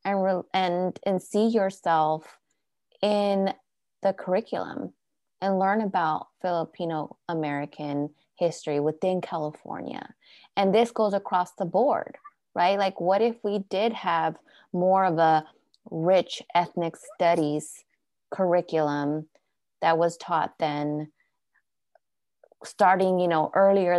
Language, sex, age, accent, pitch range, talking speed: English, female, 20-39, American, 160-195 Hz, 115 wpm